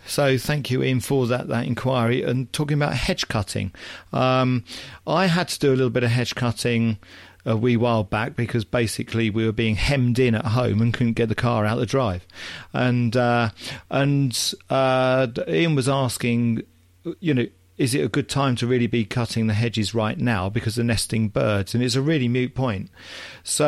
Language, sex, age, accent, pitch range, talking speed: English, male, 40-59, British, 105-130 Hz, 200 wpm